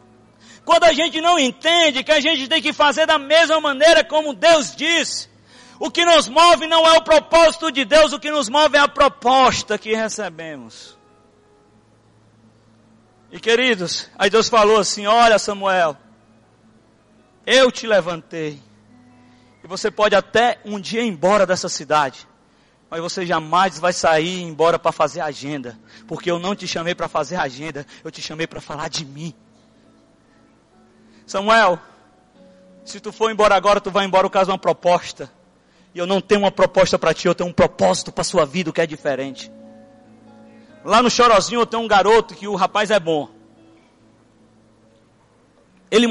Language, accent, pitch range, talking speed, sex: Portuguese, Brazilian, 160-240 Hz, 165 wpm, male